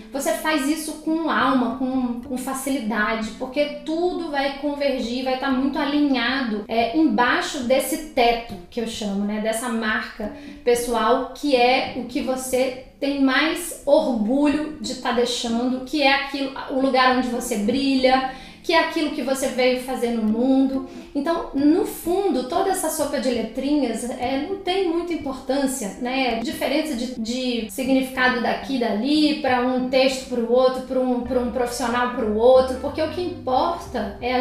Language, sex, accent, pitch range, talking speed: Portuguese, female, Brazilian, 245-295 Hz, 165 wpm